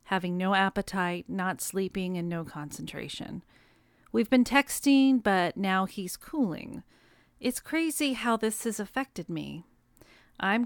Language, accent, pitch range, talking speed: English, American, 180-235 Hz, 130 wpm